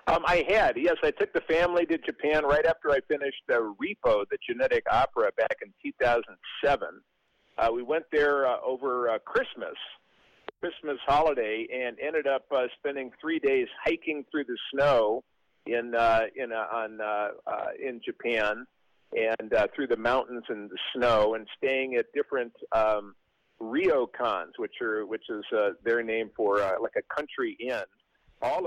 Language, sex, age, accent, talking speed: English, male, 50-69, American, 175 wpm